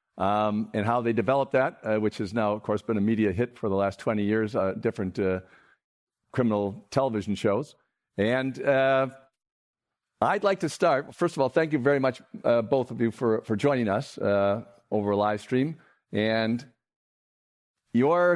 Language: English